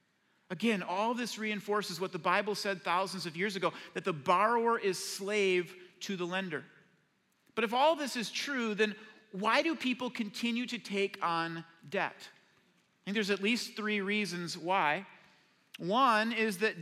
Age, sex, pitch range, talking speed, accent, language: 40-59, male, 195-250 Hz, 165 wpm, American, English